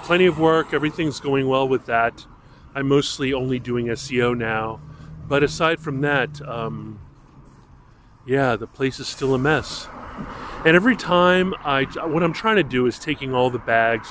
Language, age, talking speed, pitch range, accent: English, 30-49, 170 wpm, 115-135 Hz, American